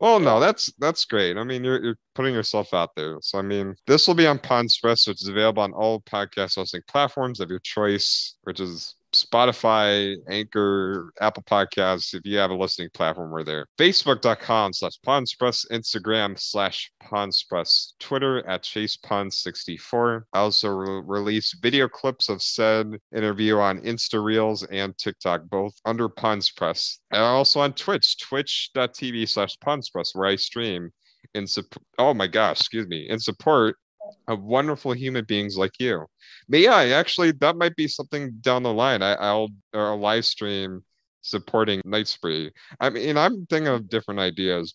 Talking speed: 165 wpm